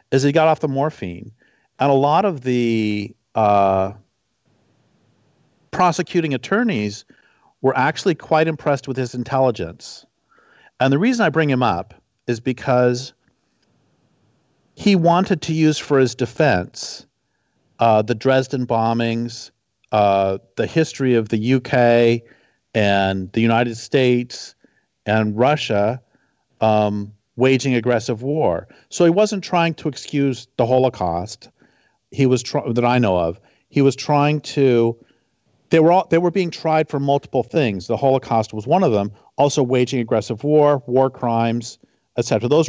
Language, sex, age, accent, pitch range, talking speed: English, male, 50-69, American, 110-145 Hz, 140 wpm